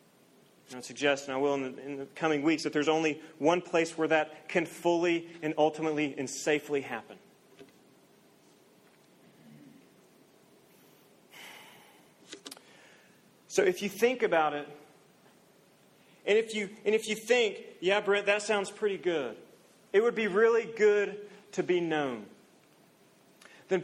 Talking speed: 135 wpm